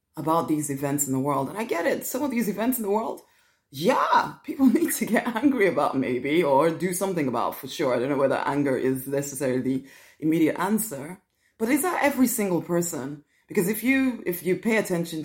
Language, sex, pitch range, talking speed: English, female, 135-185 Hz, 210 wpm